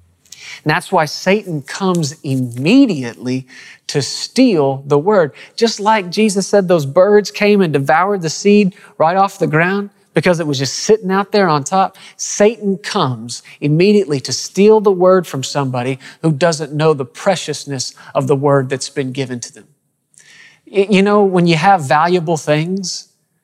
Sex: male